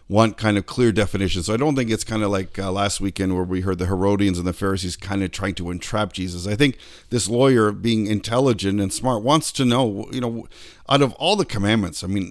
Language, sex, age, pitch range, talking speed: English, male, 50-69, 90-115 Hz, 245 wpm